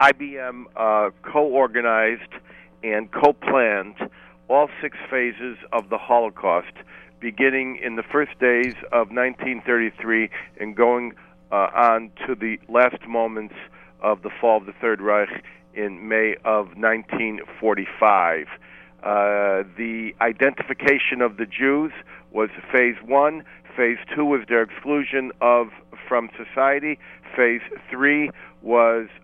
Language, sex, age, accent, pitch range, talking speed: English, male, 50-69, American, 115-140 Hz, 115 wpm